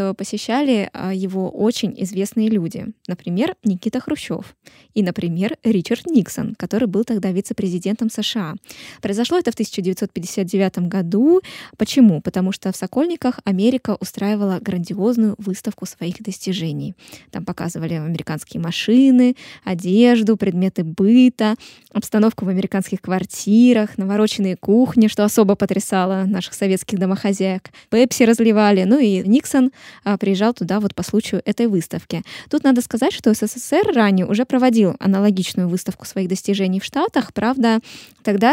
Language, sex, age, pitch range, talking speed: Russian, female, 20-39, 190-235 Hz, 125 wpm